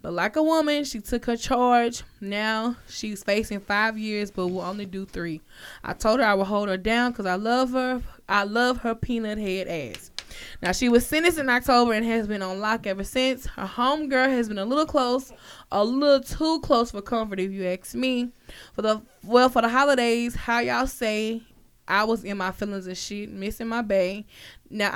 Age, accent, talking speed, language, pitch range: 10-29, American, 205 wpm, English, 200-250 Hz